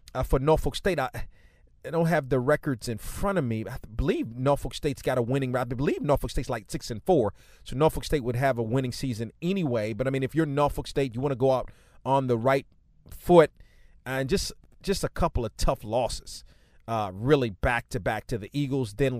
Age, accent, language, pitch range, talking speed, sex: 30-49, American, English, 115-155 Hz, 225 wpm, male